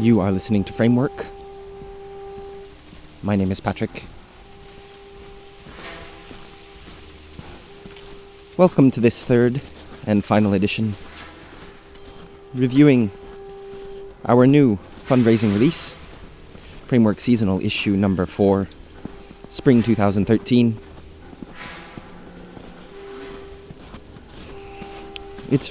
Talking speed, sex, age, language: 70 wpm, male, 20-39, English